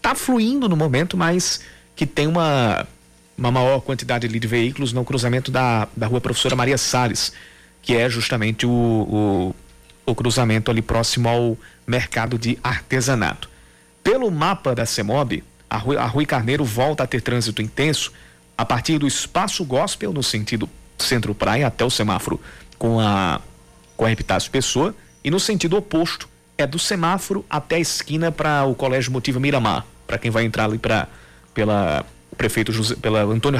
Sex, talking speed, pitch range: male, 170 wpm, 115-150 Hz